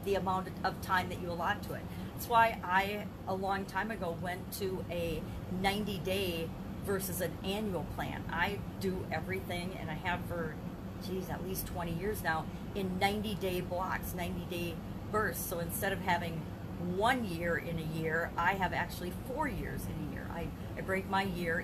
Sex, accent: female, American